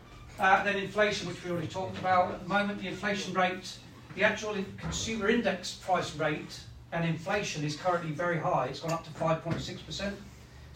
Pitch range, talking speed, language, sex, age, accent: 145-180 Hz, 175 wpm, English, male, 40-59, British